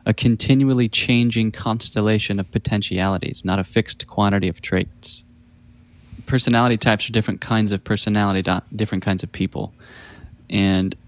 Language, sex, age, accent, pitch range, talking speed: English, male, 20-39, American, 105-125 Hz, 135 wpm